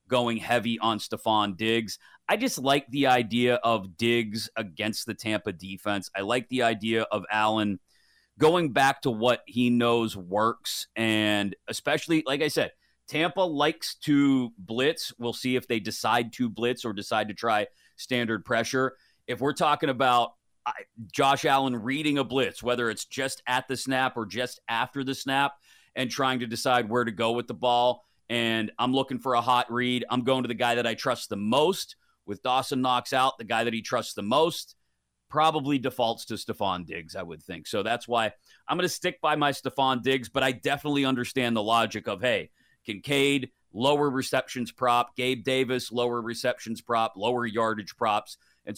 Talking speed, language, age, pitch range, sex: 185 wpm, English, 30-49, 115-135 Hz, male